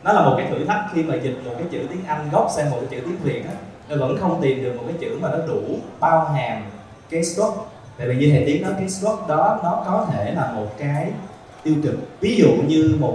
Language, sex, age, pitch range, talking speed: Vietnamese, male, 20-39, 125-165 Hz, 265 wpm